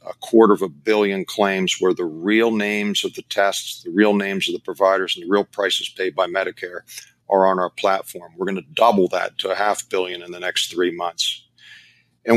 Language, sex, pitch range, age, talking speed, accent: English, male, 95-125 Hz, 50-69, 220 wpm, American